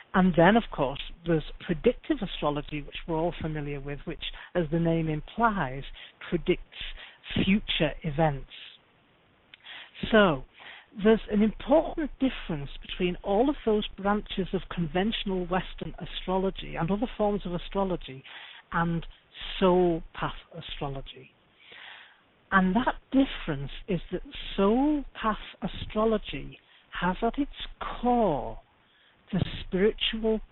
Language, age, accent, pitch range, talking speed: English, 60-79, British, 160-205 Hz, 110 wpm